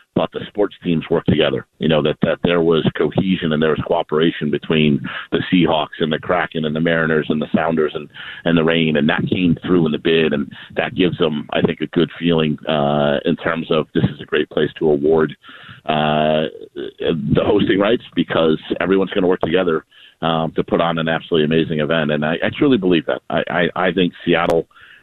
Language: English